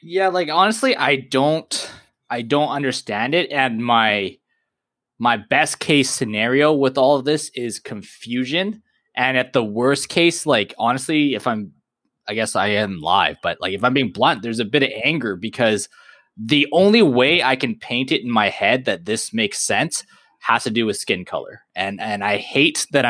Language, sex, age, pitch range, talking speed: English, male, 20-39, 120-155 Hz, 185 wpm